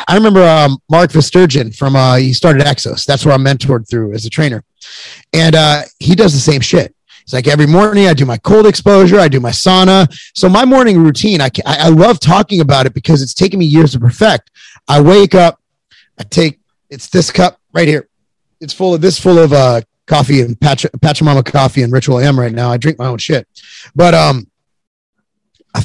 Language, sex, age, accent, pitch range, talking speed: English, male, 30-49, American, 135-170 Hz, 210 wpm